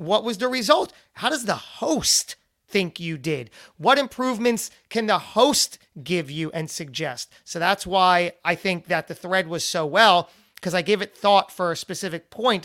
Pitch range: 165-205 Hz